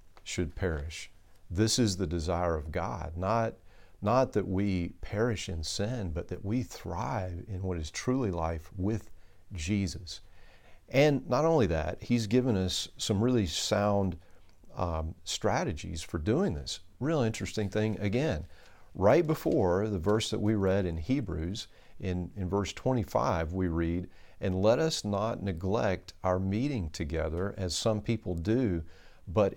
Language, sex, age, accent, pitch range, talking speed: English, male, 40-59, American, 85-110 Hz, 150 wpm